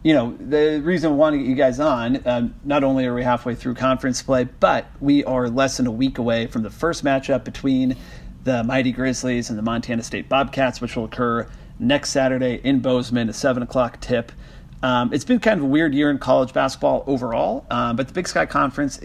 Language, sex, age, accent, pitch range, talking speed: English, male, 40-59, American, 120-135 Hz, 220 wpm